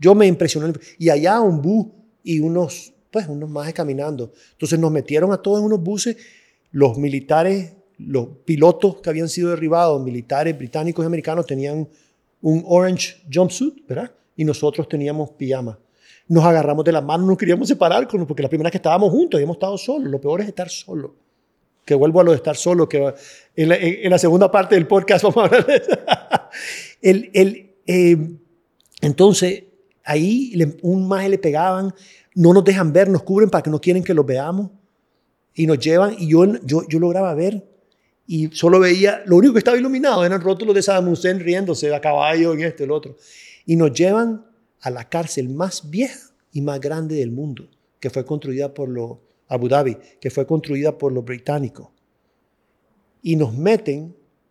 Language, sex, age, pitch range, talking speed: Spanish, male, 40-59, 150-190 Hz, 185 wpm